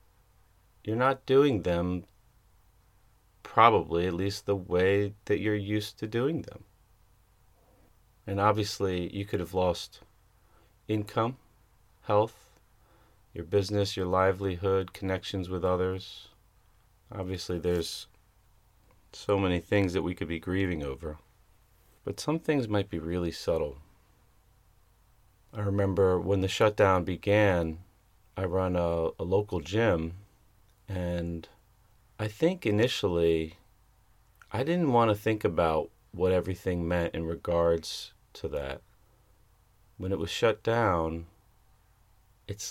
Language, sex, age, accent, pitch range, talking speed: English, male, 30-49, American, 90-105 Hz, 115 wpm